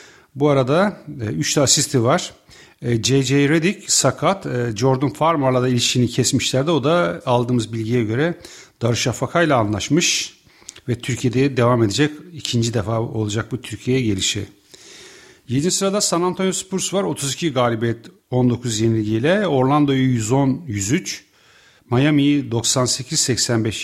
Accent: Turkish